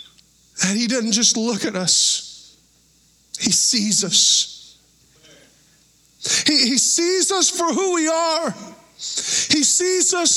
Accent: American